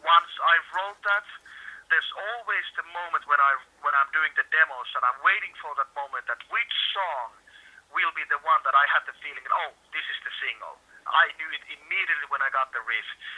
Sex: male